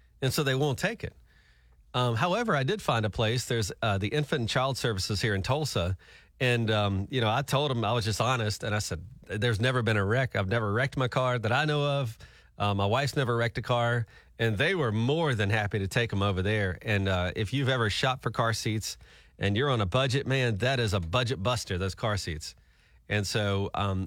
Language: English